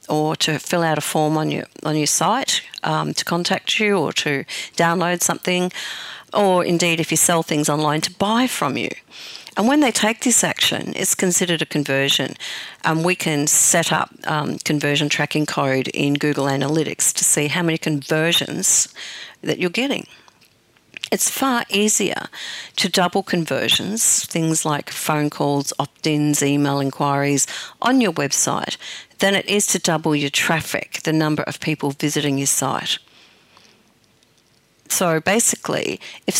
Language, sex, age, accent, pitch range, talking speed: English, female, 50-69, Australian, 150-185 Hz, 155 wpm